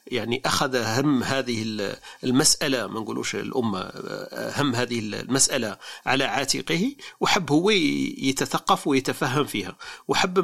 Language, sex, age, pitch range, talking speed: Arabic, male, 40-59, 120-150 Hz, 110 wpm